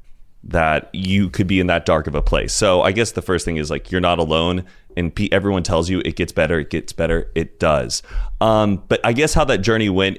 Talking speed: 240 wpm